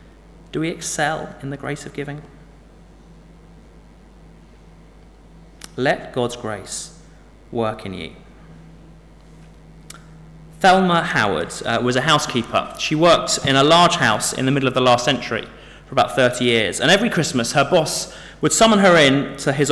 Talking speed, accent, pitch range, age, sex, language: 145 wpm, British, 100-155 Hz, 30-49, male, English